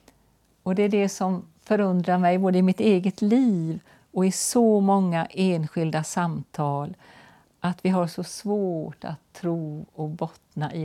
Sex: female